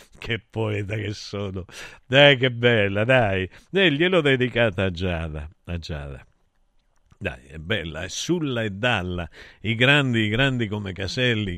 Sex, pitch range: male, 85-115 Hz